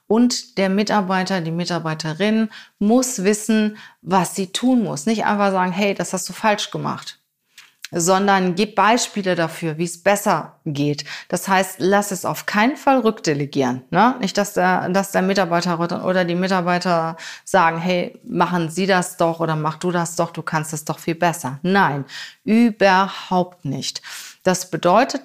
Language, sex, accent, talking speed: German, female, German, 155 wpm